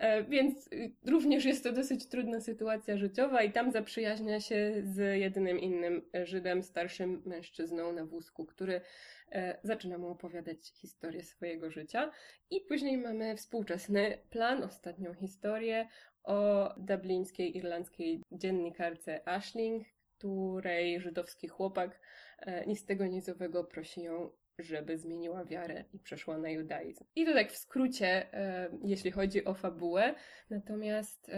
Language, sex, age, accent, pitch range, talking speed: Polish, female, 20-39, native, 175-210 Hz, 125 wpm